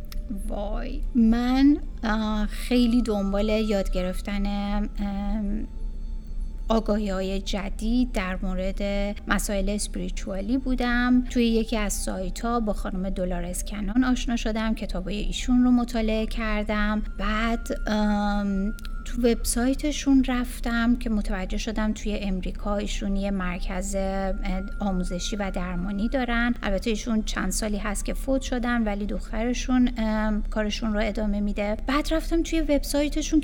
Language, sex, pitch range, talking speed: Persian, female, 200-245 Hz, 115 wpm